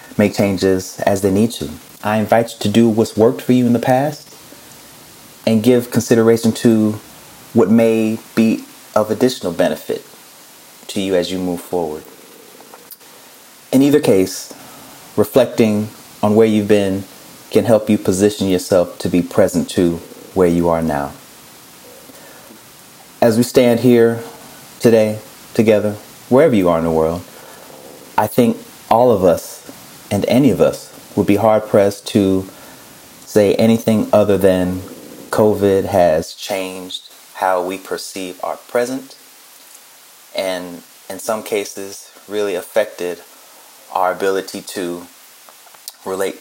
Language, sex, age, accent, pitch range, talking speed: English, male, 30-49, American, 95-115 Hz, 135 wpm